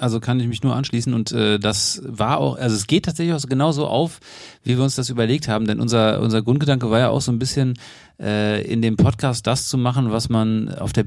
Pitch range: 110-130 Hz